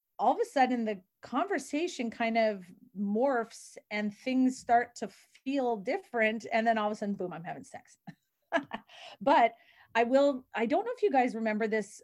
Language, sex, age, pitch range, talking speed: English, female, 30-49, 205-265 Hz, 180 wpm